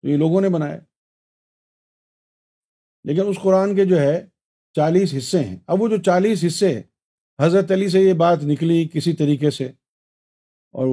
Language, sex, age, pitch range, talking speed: Urdu, male, 50-69, 145-190 Hz, 155 wpm